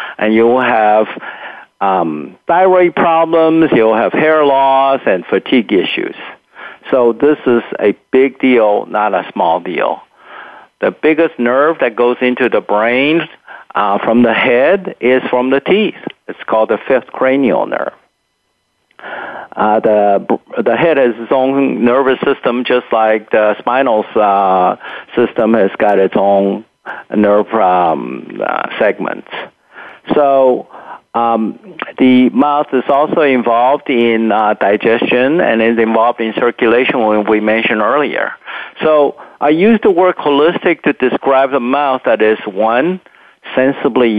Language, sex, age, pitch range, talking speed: English, male, 50-69, 105-135 Hz, 135 wpm